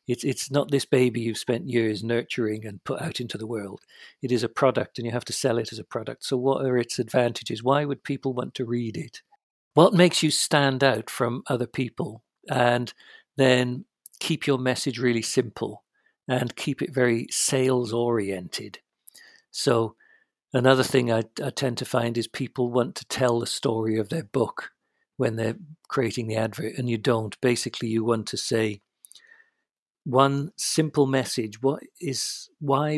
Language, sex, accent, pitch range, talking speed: English, male, British, 115-140 Hz, 180 wpm